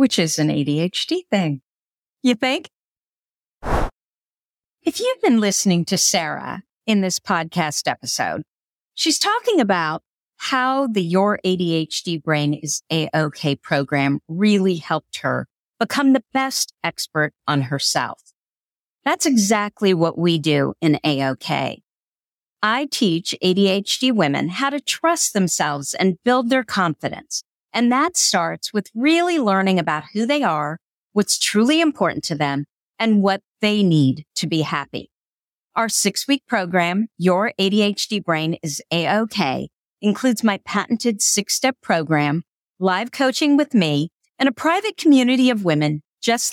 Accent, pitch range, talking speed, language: American, 165-255 Hz, 135 wpm, English